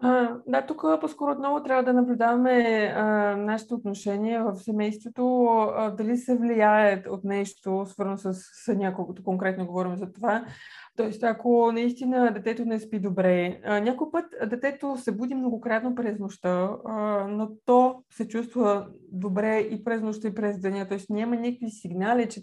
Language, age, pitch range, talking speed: Bulgarian, 20-39, 195-230 Hz, 165 wpm